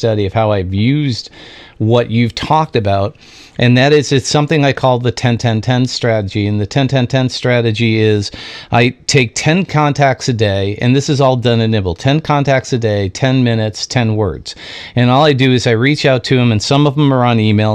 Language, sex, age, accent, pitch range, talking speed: English, male, 40-59, American, 110-135 Hz, 210 wpm